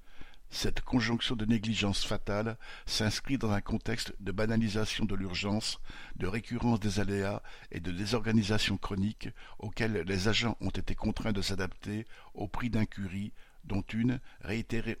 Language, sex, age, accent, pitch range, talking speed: French, male, 60-79, French, 100-115 Hz, 140 wpm